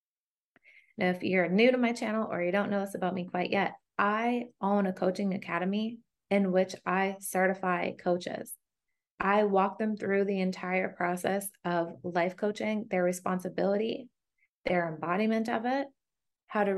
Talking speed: 155 wpm